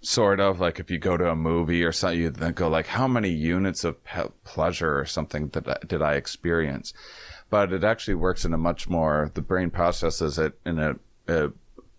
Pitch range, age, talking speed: 80-95 Hz, 30-49, 215 wpm